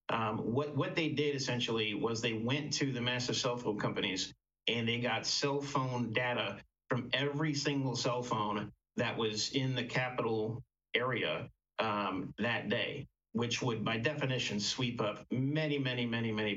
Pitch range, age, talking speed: 110-135 Hz, 50-69, 165 wpm